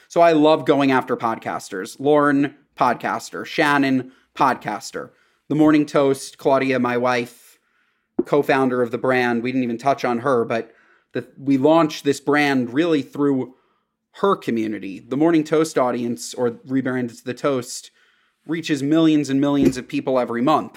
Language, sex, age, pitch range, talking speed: English, male, 30-49, 130-150 Hz, 150 wpm